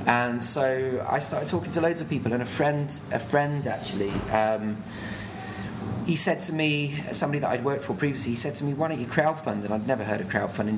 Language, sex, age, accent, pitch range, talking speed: English, male, 20-39, British, 105-125 Hz, 225 wpm